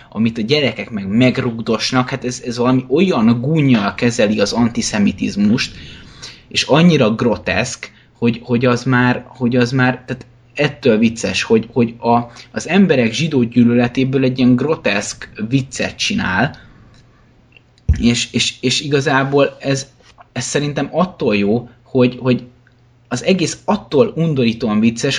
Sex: male